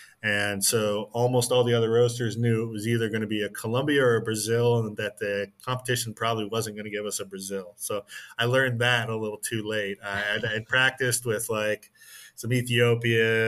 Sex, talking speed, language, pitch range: male, 205 wpm, English, 100-115 Hz